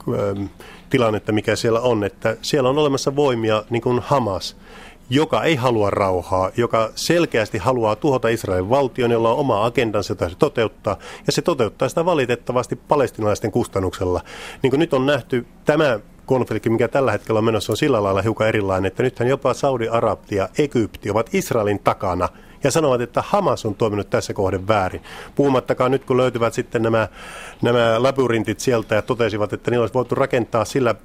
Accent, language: native, Finnish